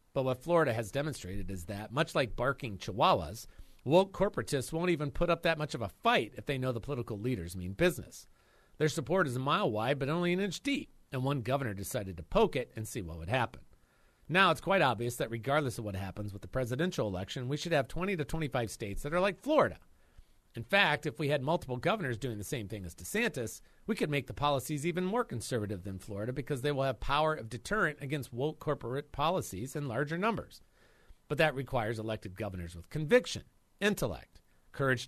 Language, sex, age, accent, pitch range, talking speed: English, male, 40-59, American, 105-155 Hz, 210 wpm